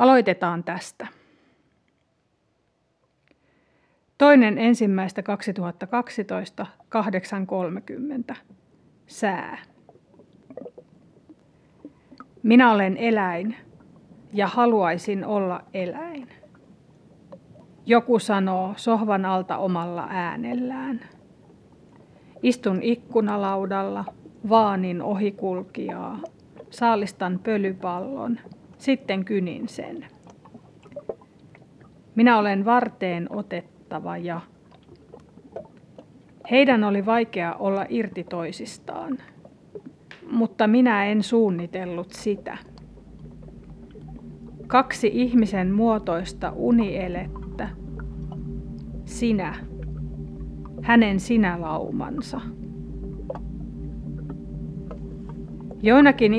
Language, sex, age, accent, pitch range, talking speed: Finnish, female, 30-49, native, 175-230 Hz, 55 wpm